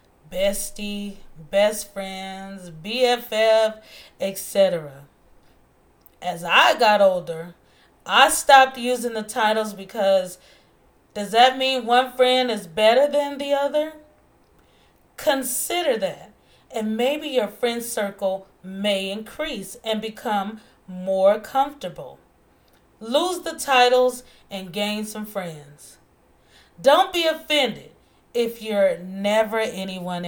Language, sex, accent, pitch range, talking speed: English, female, American, 185-245 Hz, 105 wpm